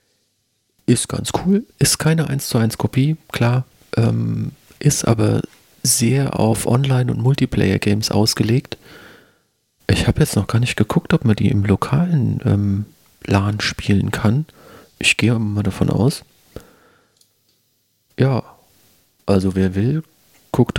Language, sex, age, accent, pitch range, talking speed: German, male, 40-59, German, 100-130 Hz, 130 wpm